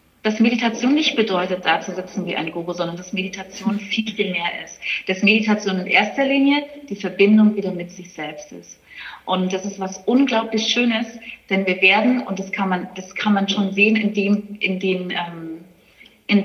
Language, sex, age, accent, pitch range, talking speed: German, female, 30-49, German, 180-215 Hz, 190 wpm